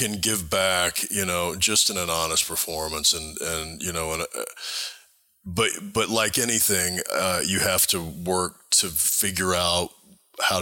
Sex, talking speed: male, 165 wpm